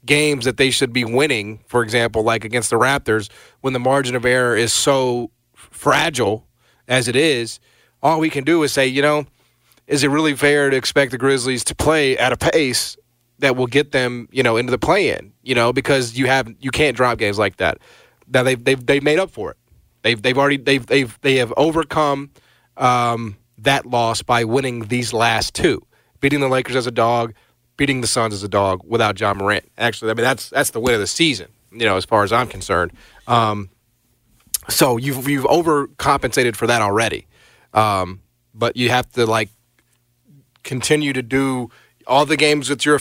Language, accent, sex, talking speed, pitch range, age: English, American, male, 200 wpm, 115-140 Hz, 30-49